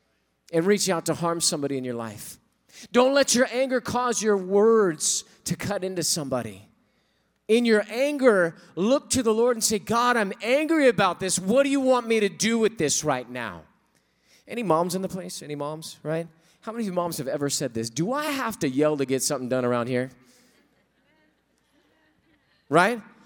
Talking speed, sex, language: 190 wpm, male, English